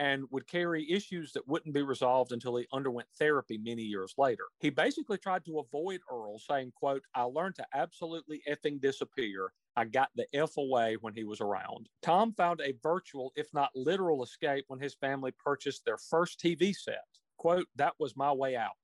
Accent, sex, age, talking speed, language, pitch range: American, male, 40-59, 190 wpm, English, 130-170 Hz